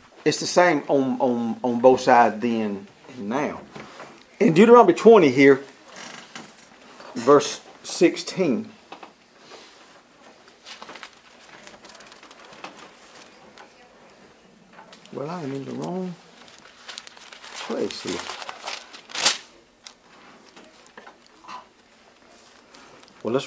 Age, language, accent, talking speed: 60-79, English, American, 70 wpm